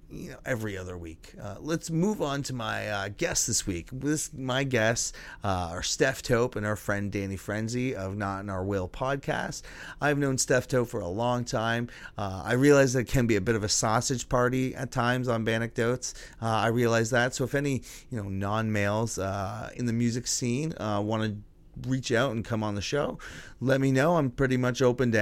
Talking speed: 210 wpm